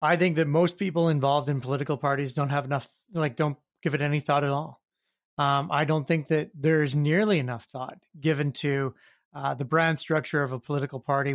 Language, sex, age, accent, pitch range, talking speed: English, male, 30-49, American, 145-170 Hz, 205 wpm